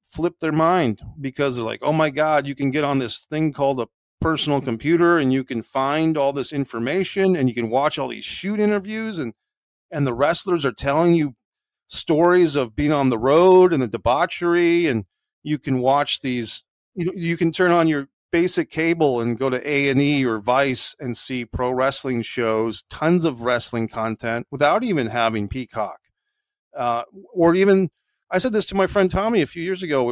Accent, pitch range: American, 125-170 Hz